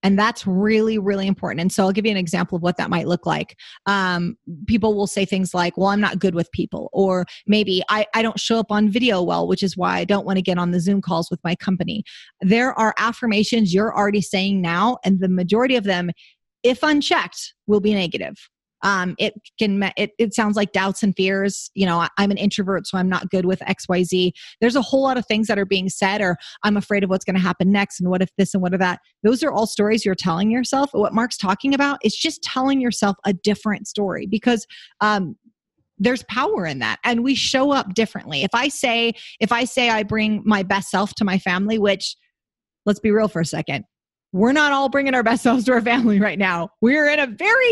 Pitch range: 190-225 Hz